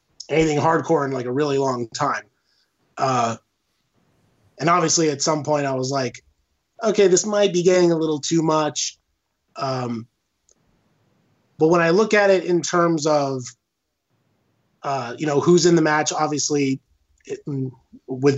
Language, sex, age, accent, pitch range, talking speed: English, male, 20-39, American, 130-170 Hz, 150 wpm